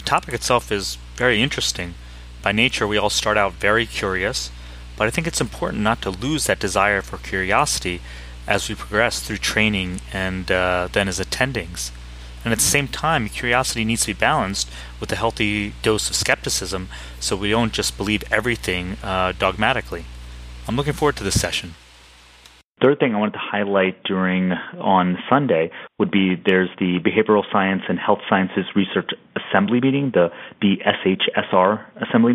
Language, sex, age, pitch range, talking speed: English, male, 30-49, 90-105 Hz, 165 wpm